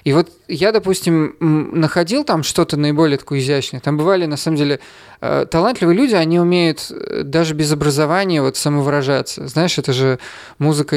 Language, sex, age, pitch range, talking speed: Russian, male, 20-39, 140-170 Hz, 150 wpm